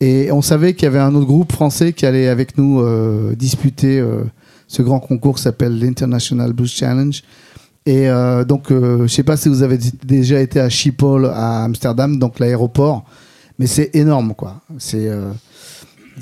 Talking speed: 185 wpm